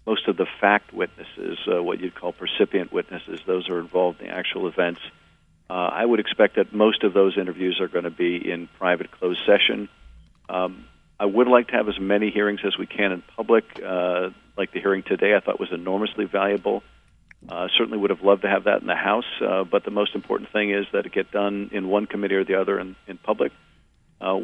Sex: male